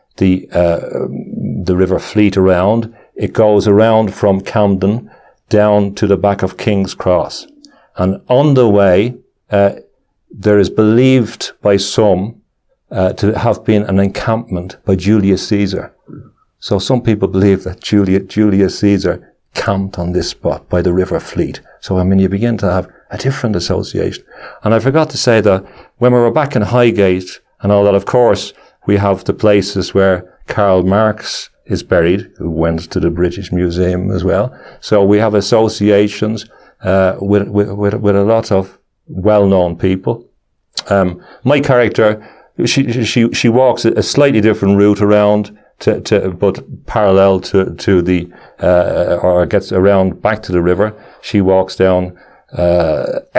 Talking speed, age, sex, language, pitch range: 155 wpm, 50-69, male, English, 95-110 Hz